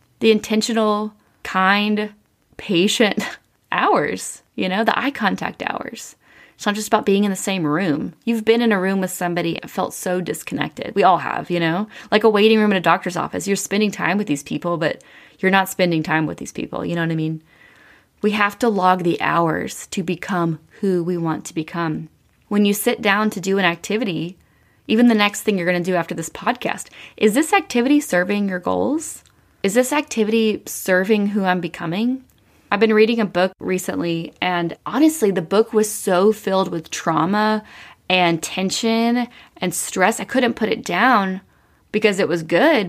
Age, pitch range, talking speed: 20-39, 180-225 Hz, 190 wpm